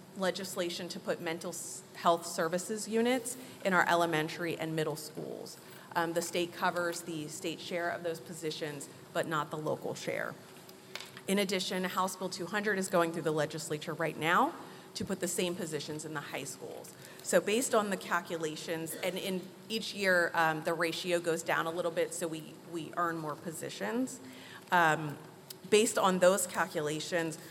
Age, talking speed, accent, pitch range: 30-49, 165 wpm, American, 160-190 Hz